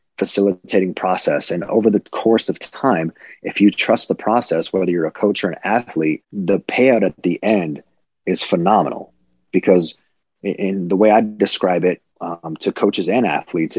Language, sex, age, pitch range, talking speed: English, male, 30-49, 85-105 Hz, 170 wpm